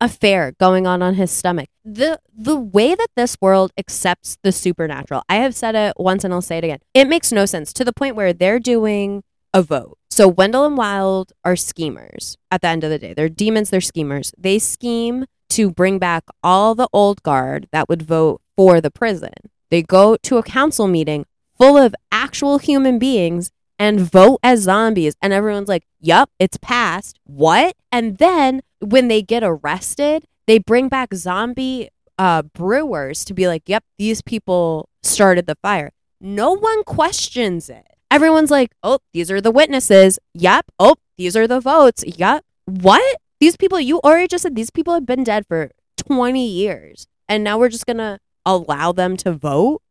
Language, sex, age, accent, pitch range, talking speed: English, female, 20-39, American, 180-250 Hz, 185 wpm